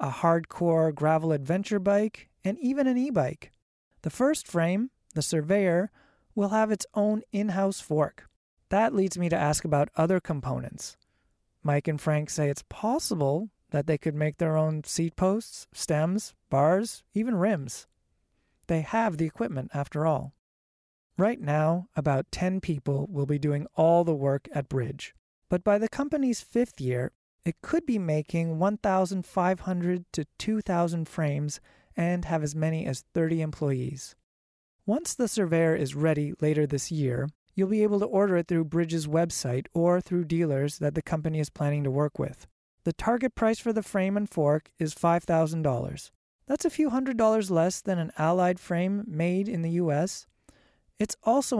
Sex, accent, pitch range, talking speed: male, American, 150-195 Hz, 165 wpm